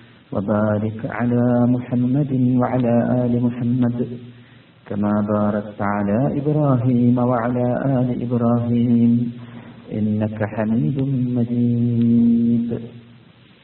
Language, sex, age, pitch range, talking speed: Malayalam, male, 50-69, 115-125 Hz, 75 wpm